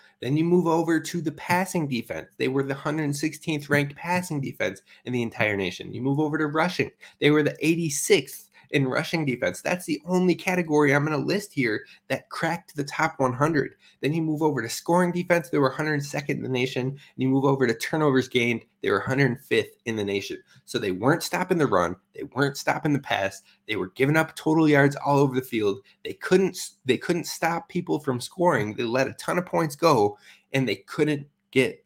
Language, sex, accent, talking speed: English, male, American, 210 wpm